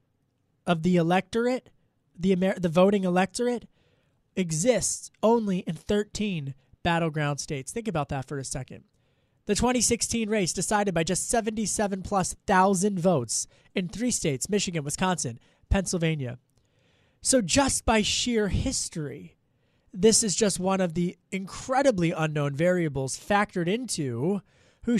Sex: male